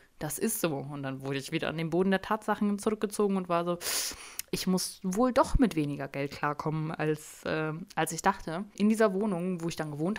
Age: 20-39